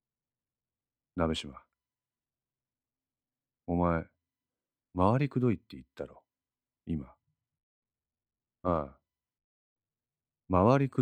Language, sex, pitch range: Japanese, male, 75-100 Hz